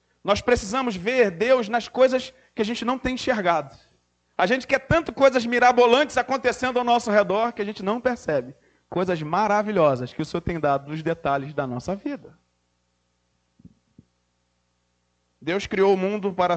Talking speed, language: 160 wpm, Portuguese